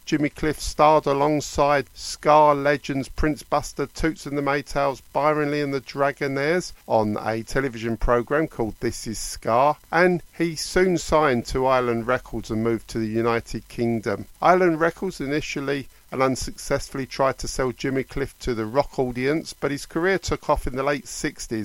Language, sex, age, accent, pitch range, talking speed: English, male, 50-69, British, 115-155 Hz, 165 wpm